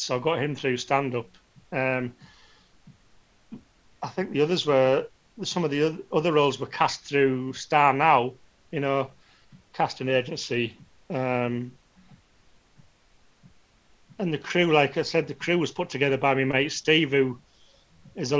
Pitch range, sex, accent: 130-155 Hz, male, British